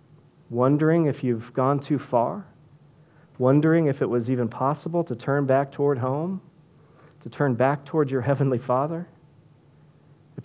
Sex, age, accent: male, 40-59, American